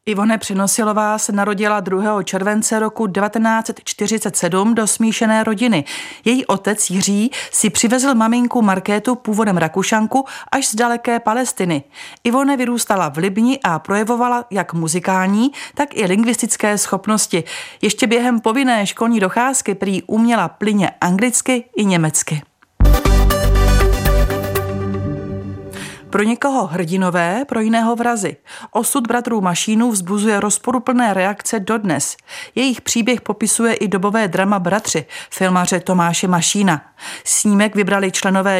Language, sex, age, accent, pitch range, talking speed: Czech, female, 40-59, native, 185-230 Hz, 115 wpm